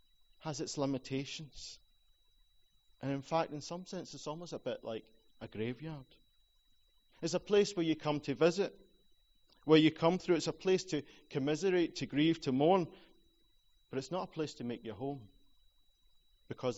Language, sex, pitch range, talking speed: English, male, 130-175 Hz, 170 wpm